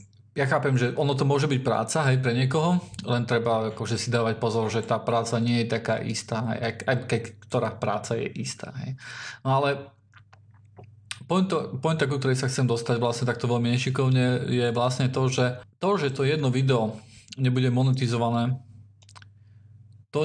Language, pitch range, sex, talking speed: Slovak, 115-130 Hz, male, 160 wpm